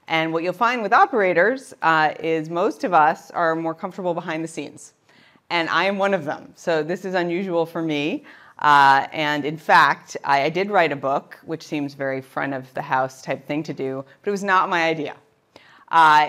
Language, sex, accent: English, female, American